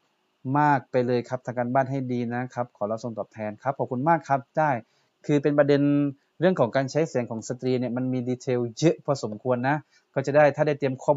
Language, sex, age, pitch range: Thai, male, 20-39, 120-140 Hz